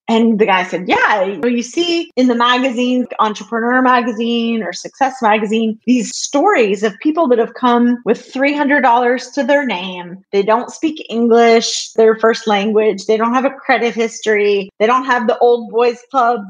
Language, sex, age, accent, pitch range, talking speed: English, female, 30-49, American, 215-280 Hz, 175 wpm